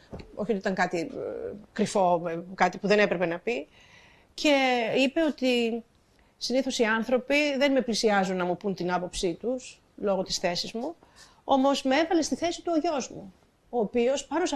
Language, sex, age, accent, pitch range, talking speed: Greek, female, 40-59, native, 190-275 Hz, 180 wpm